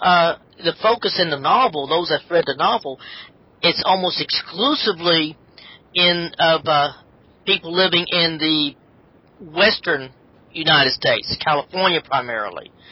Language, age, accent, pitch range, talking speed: English, 40-59, American, 140-175 Hz, 120 wpm